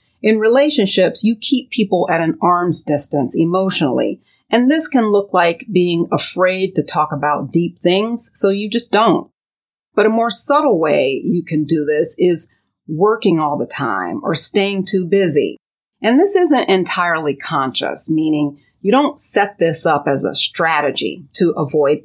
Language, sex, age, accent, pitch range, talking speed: English, female, 40-59, American, 160-215 Hz, 165 wpm